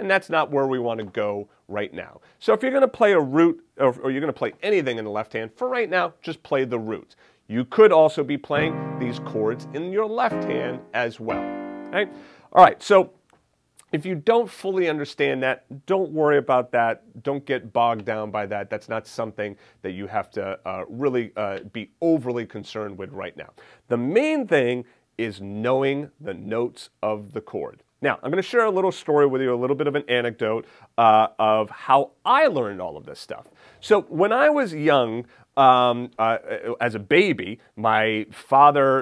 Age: 30-49